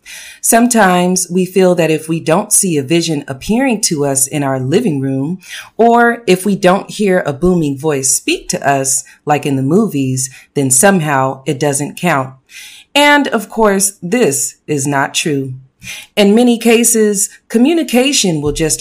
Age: 30-49